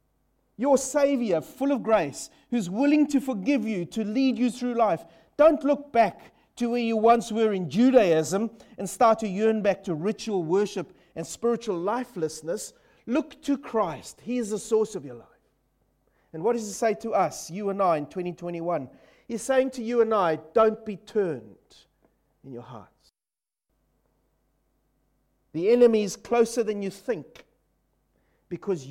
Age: 40-59